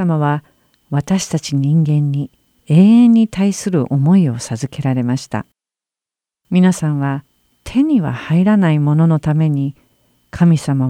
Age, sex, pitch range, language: 50-69, female, 135-180 Hz, Japanese